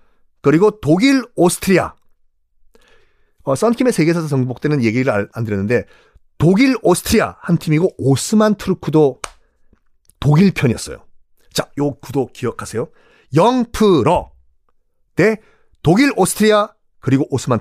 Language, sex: Korean, male